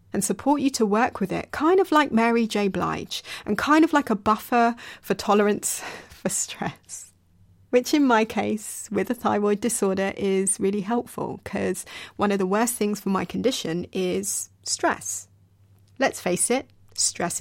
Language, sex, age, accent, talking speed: English, female, 30-49, British, 170 wpm